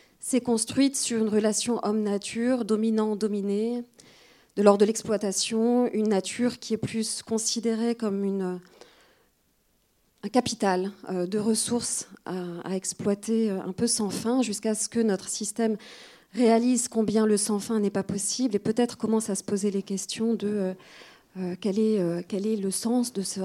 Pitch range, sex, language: 195-230 Hz, female, French